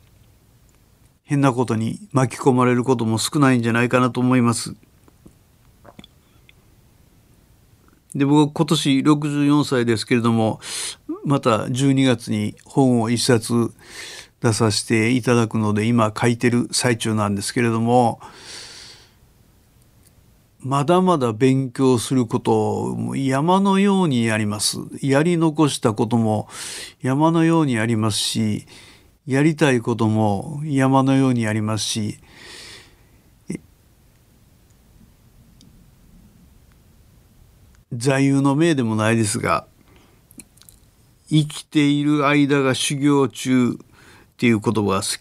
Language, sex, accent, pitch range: Japanese, male, native, 110-140 Hz